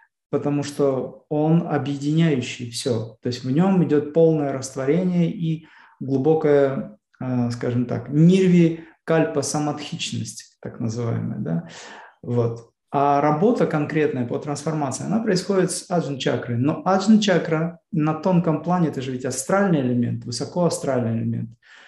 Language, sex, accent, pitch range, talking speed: Russian, male, native, 135-165 Hz, 120 wpm